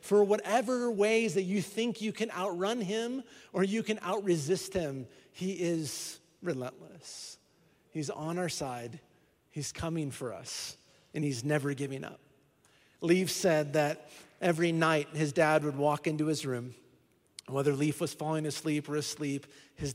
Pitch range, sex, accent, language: 140-170 Hz, male, American, English